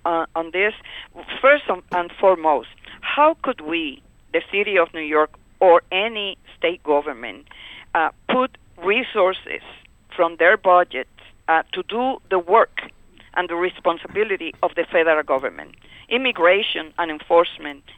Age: 50-69